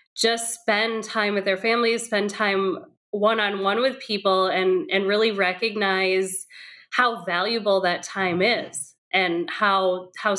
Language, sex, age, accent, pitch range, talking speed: English, female, 20-39, American, 190-240 Hz, 145 wpm